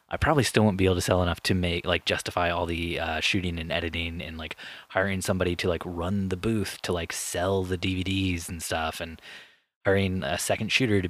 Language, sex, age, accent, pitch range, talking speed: English, male, 20-39, American, 85-100 Hz, 220 wpm